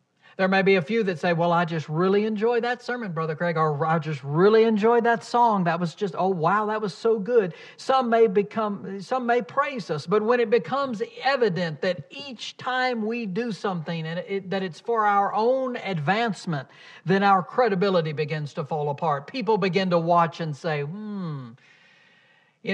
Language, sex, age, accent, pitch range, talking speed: English, male, 60-79, American, 160-220 Hz, 195 wpm